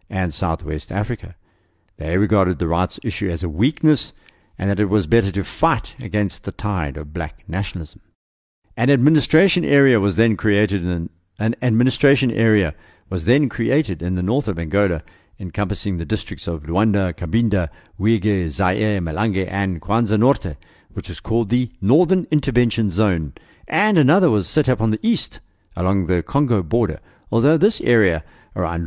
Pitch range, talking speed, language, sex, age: 90-115 Hz, 160 wpm, English, male, 60-79